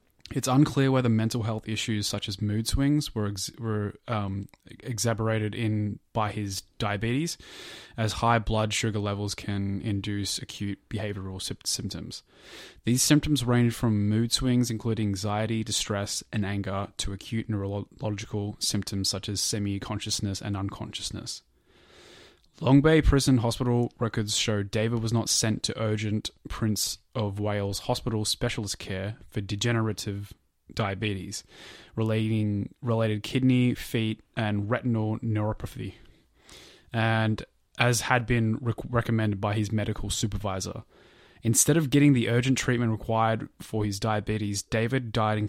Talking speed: 135 wpm